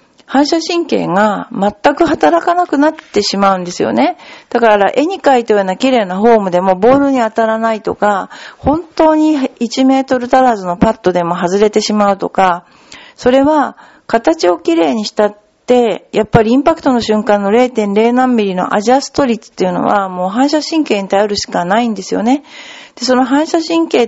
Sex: female